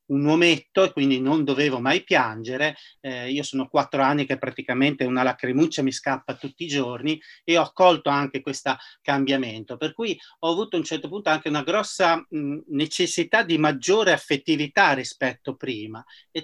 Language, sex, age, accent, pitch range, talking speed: Italian, male, 40-59, native, 135-165 Hz, 170 wpm